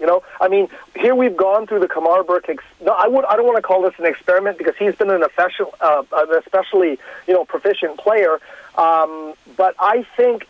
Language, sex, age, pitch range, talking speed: English, male, 40-59, 165-205 Hz, 215 wpm